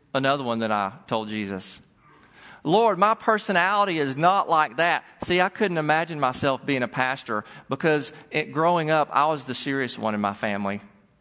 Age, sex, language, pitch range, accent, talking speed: 40-59, male, English, 110-155 Hz, American, 175 wpm